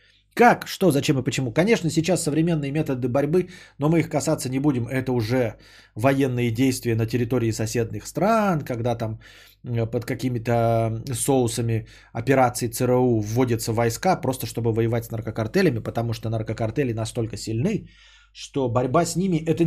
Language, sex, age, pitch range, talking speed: Bulgarian, male, 20-39, 120-160 Hz, 145 wpm